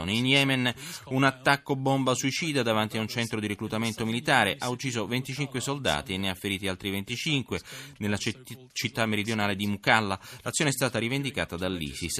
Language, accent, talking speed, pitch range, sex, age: Italian, native, 160 wpm, 100-130 Hz, male, 30-49